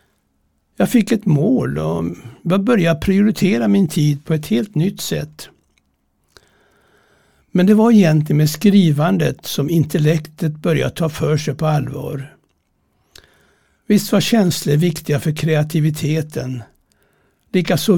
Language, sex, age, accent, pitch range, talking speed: Swedish, male, 60-79, native, 145-190 Hz, 115 wpm